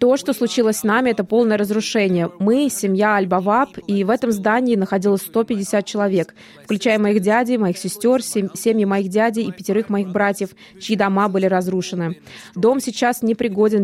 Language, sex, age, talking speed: Russian, female, 20-39, 165 wpm